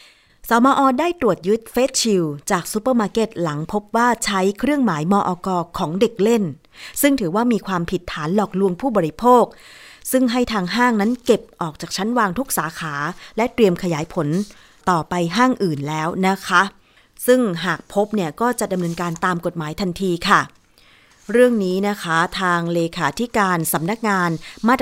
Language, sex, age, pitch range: Thai, female, 20-39, 170-225 Hz